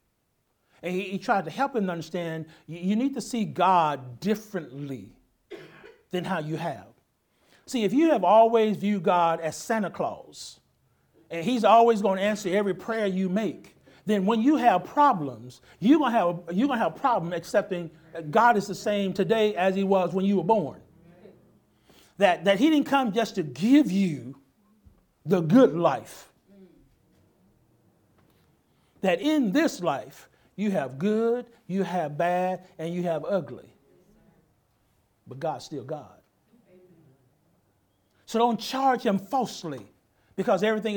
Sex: male